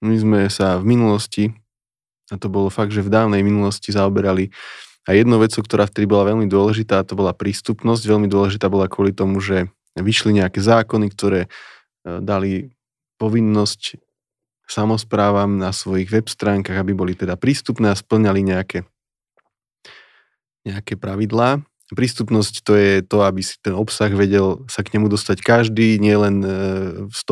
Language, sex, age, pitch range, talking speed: Slovak, male, 20-39, 100-115 Hz, 150 wpm